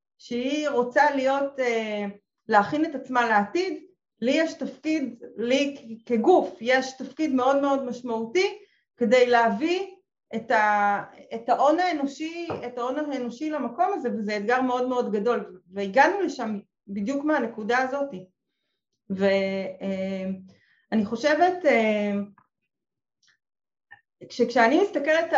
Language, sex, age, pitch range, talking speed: Hebrew, female, 30-49, 225-305 Hz, 90 wpm